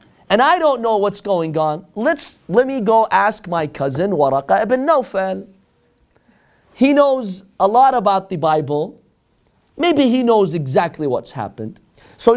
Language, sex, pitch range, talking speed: English, male, 140-210 Hz, 150 wpm